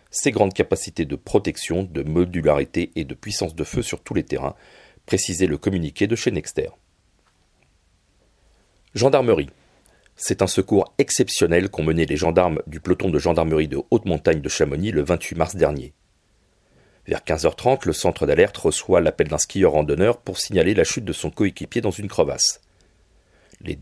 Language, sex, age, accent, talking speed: French, male, 40-59, French, 160 wpm